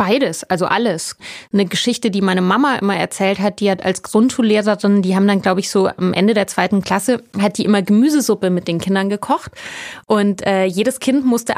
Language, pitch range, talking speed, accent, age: German, 185-225 Hz, 200 wpm, German, 20-39